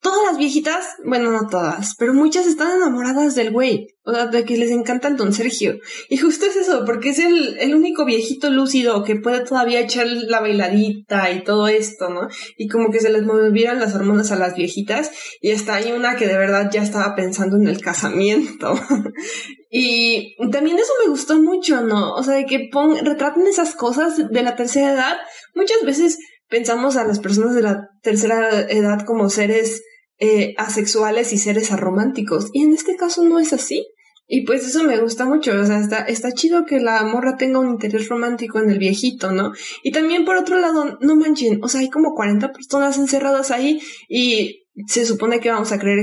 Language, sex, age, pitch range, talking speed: Spanish, female, 20-39, 210-280 Hz, 200 wpm